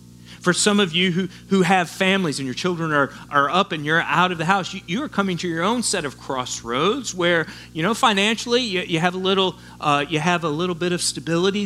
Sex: male